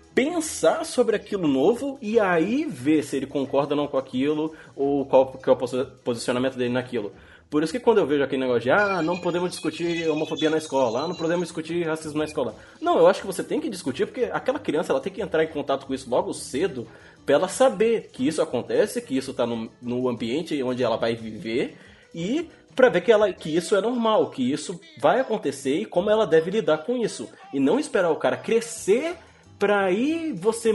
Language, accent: Portuguese, Brazilian